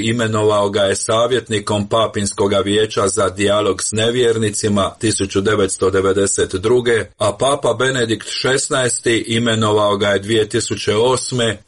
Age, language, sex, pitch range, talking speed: 40-59, Croatian, male, 105-120 Hz, 100 wpm